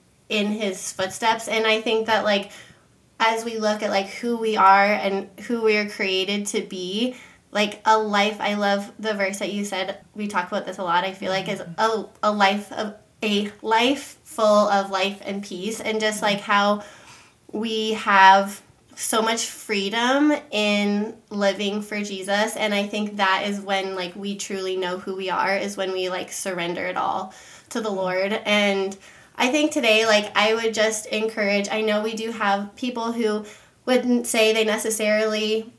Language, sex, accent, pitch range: English, female, American, 200-220 Hz